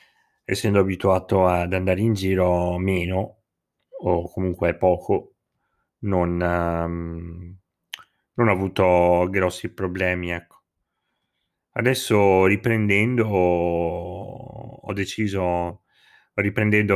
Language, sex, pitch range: Italian, male, 85-100 Hz